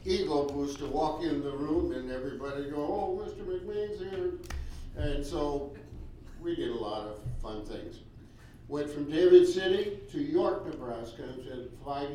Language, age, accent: English, 60-79, American